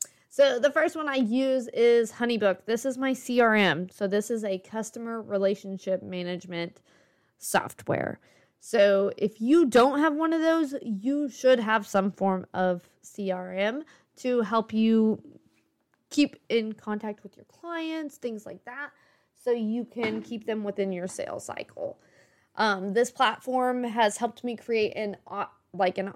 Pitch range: 200-250 Hz